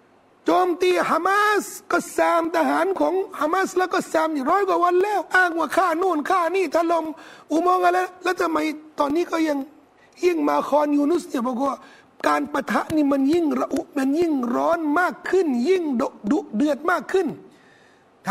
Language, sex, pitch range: Thai, male, 265-340 Hz